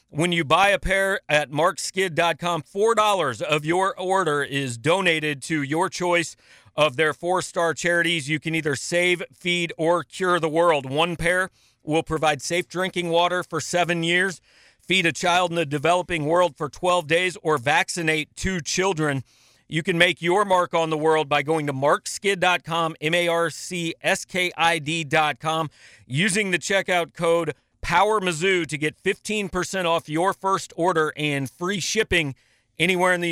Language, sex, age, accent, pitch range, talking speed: English, male, 40-59, American, 155-185 Hz, 155 wpm